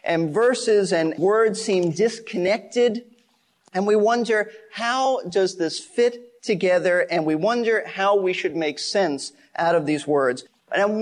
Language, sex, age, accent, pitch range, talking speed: English, male, 40-59, American, 175-220 Hz, 145 wpm